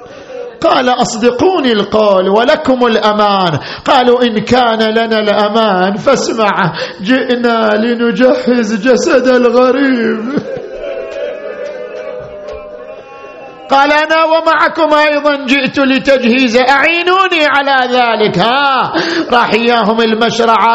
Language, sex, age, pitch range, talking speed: Arabic, male, 50-69, 220-275 Hz, 80 wpm